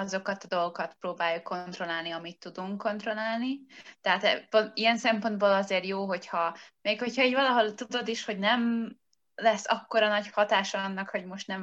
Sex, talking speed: female, 155 wpm